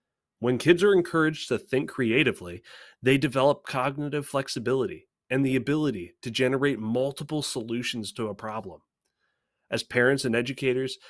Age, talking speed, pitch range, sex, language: 20-39, 135 wpm, 115-145 Hz, male, English